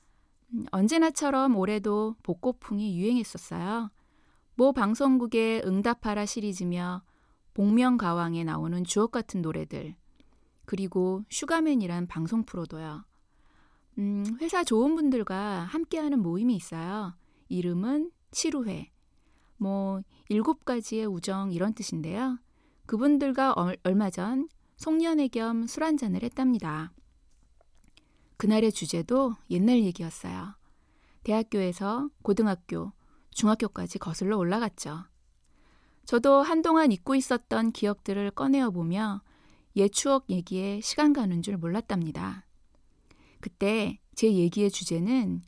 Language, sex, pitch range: Korean, female, 185-255 Hz